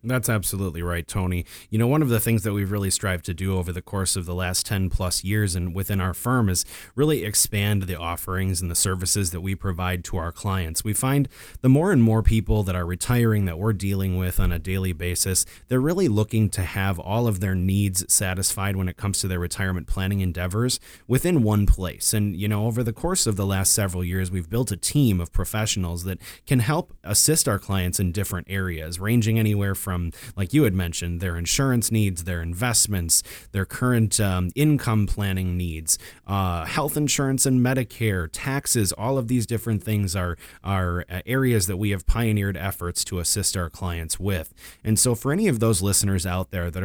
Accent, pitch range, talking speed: American, 90-115 Hz, 205 wpm